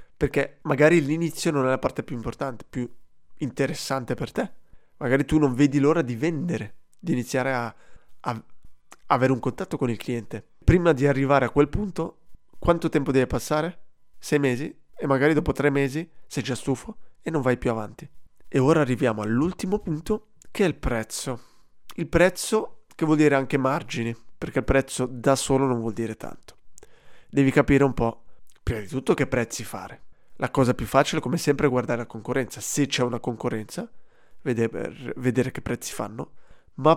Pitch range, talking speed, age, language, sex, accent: 125-155 Hz, 180 wpm, 20-39, Italian, male, native